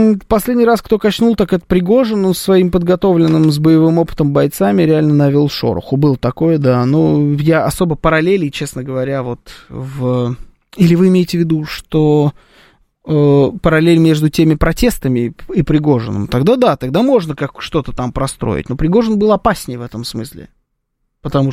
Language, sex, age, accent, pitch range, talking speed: Russian, male, 20-39, native, 140-170 Hz, 160 wpm